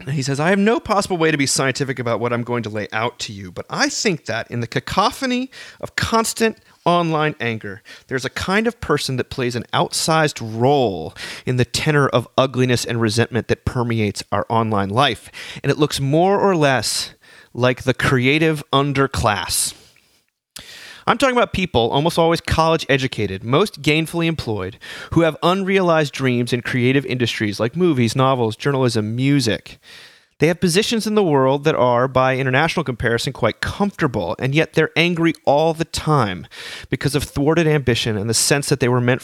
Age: 30-49